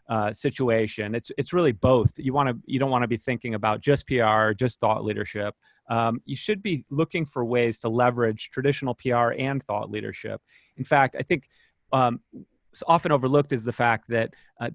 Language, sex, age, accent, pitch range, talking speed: English, male, 30-49, American, 110-130 Hz, 190 wpm